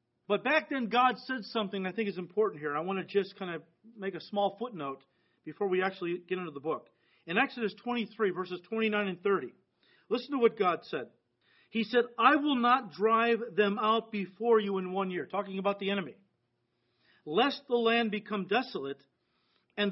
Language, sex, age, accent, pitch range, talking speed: English, male, 40-59, American, 185-230 Hz, 190 wpm